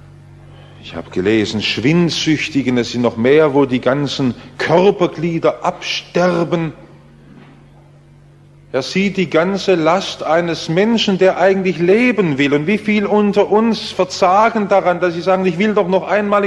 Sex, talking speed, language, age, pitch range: male, 140 wpm, English, 50-69, 125-175 Hz